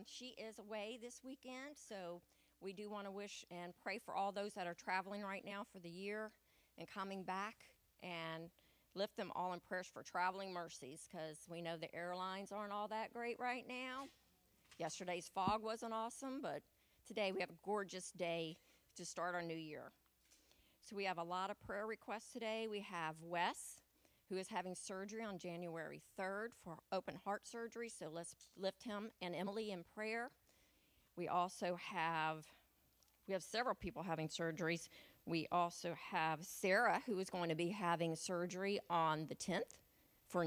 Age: 40-59